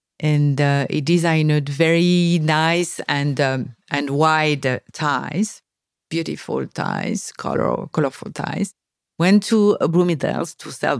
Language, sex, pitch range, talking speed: English, female, 140-175 Hz, 120 wpm